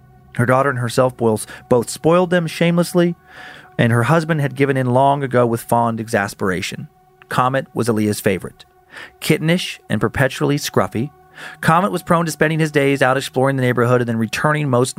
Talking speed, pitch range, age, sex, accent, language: 170 wpm, 115-150 Hz, 40-59, male, American, English